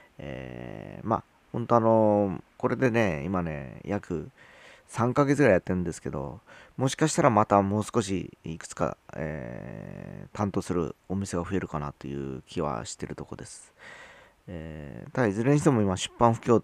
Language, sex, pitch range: Japanese, male, 80-105 Hz